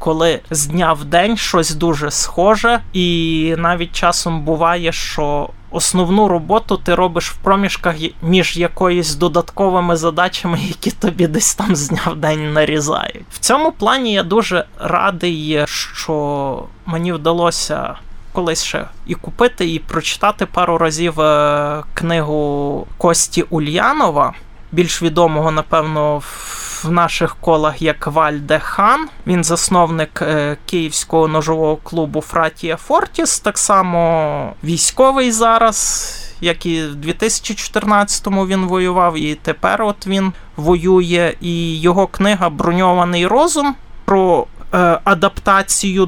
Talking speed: 120 wpm